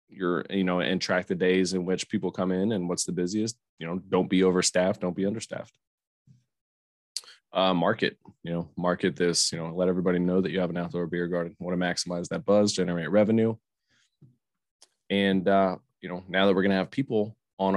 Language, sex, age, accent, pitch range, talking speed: English, male, 20-39, American, 90-100 Hz, 205 wpm